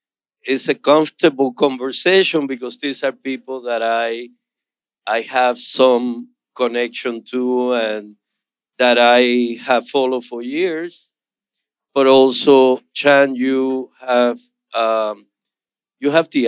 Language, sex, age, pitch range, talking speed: English, male, 50-69, 125-160 Hz, 115 wpm